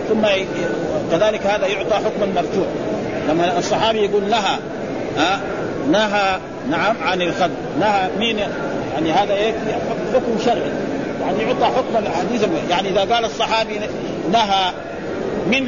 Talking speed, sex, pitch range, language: 130 wpm, male, 195-230 Hz, Arabic